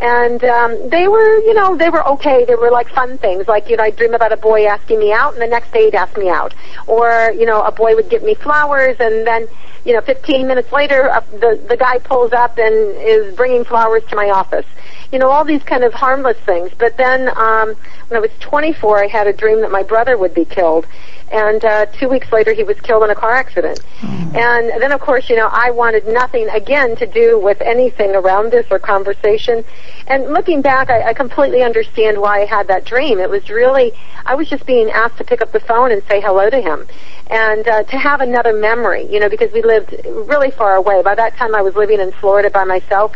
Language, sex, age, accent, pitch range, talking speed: English, female, 40-59, American, 215-275 Hz, 240 wpm